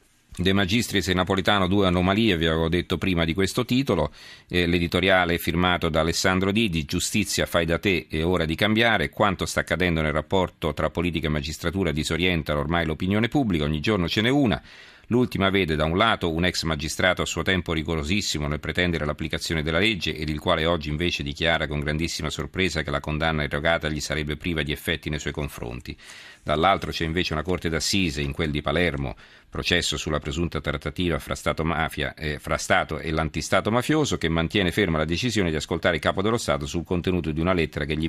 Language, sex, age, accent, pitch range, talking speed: Italian, male, 40-59, native, 75-95 Hz, 195 wpm